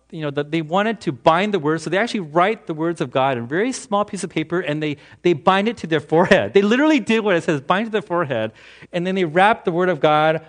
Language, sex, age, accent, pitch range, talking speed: English, male, 40-59, American, 145-195 Hz, 290 wpm